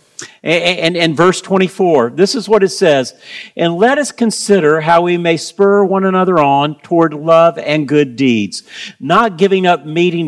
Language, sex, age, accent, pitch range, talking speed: English, male, 50-69, American, 150-200 Hz, 170 wpm